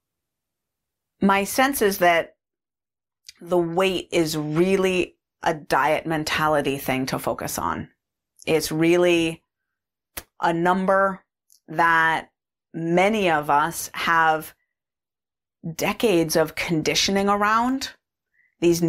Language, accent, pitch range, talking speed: English, American, 155-195 Hz, 90 wpm